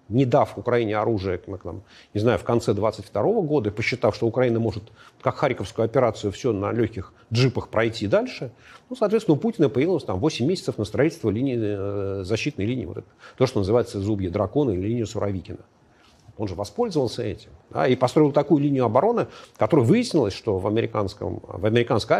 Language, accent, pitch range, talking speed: Russian, native, 105-135 Hz, 180 wpm